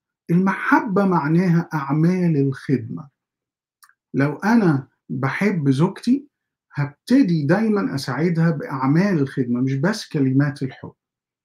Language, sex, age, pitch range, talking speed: Arabic, male, 50-69, 135-180 Hz, 90 wpm